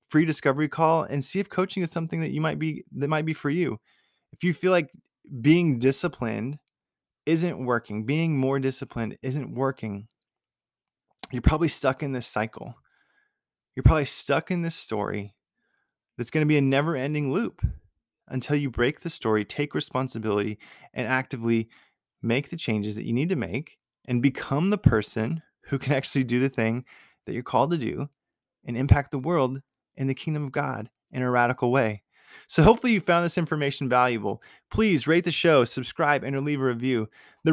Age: 20-39